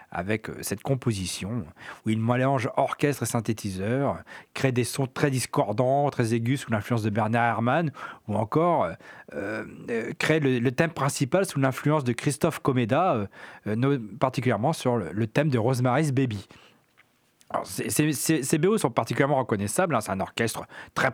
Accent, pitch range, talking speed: French, 120-155 Hz, 155 wpm